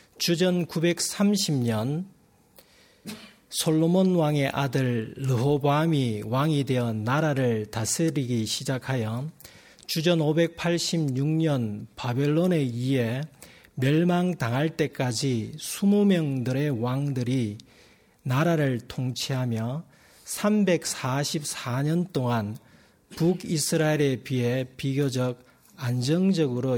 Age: 40-59